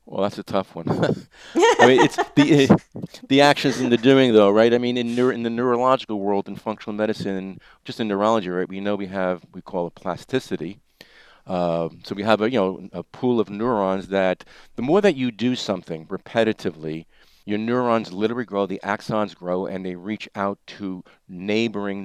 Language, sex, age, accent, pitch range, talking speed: English, male, 50-69, American, 95-115 Hz, 195 wpm